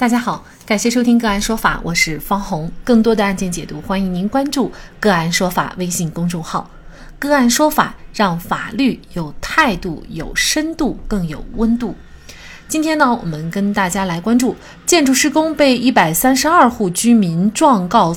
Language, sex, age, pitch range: Chinese, female, 30-49, 185-255 Hz